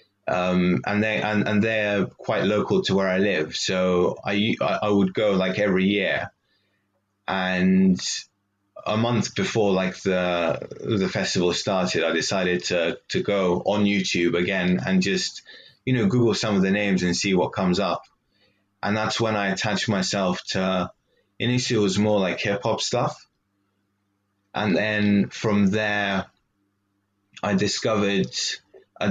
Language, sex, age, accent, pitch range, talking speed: English, male, 20-39, British, 90-100 Hz, 150 wpm